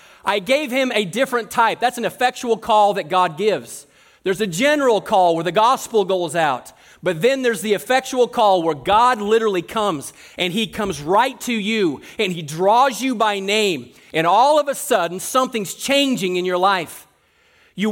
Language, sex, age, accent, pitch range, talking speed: English, male, 40-59, American, 195-245 Hz, 185 wpm